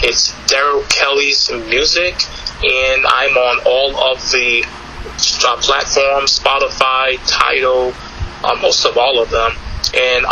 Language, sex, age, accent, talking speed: English, male, 20-39, American, 120 wpm